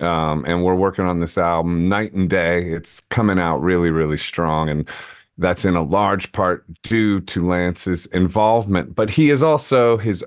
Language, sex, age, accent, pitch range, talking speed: English, male, 40-59, American, 85-100 Hz, 180 wpm